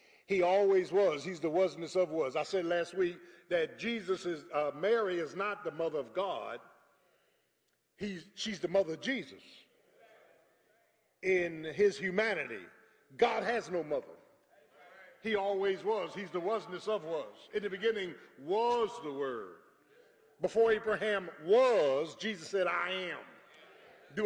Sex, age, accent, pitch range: male, 50-69, American, 175-250 Hz